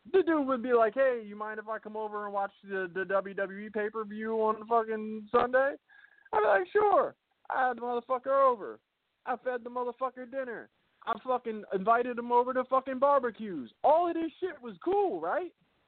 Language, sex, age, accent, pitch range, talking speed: English, male, 20-39, American, 195-265 Hz, 190 wpm